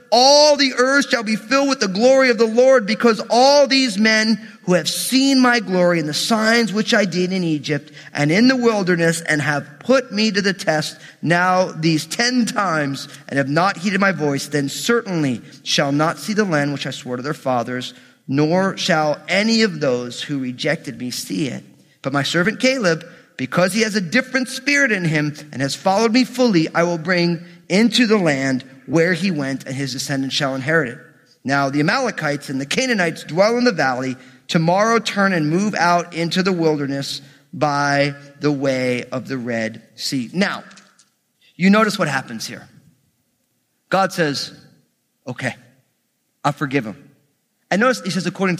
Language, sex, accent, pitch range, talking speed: English, male, American, 140-215 Hz, 180 wpm